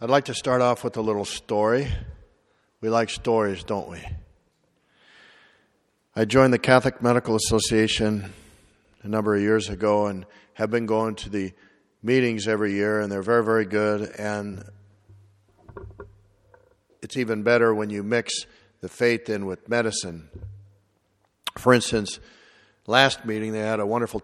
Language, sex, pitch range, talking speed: English, male, 95-115 Hz, 145 wpm